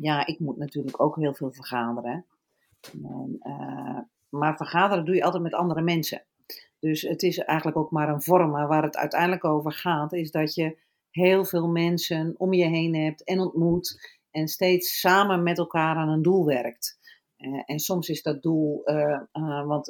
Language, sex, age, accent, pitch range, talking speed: Dutch, female, 40-59, Dutch, 150-180 Hz, 170 wpm